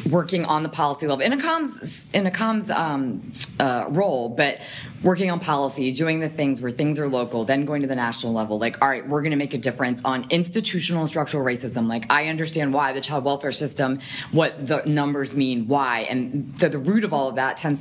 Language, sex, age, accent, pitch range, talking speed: English, female, 20-39, American, 130-155 Hz, 200 wpm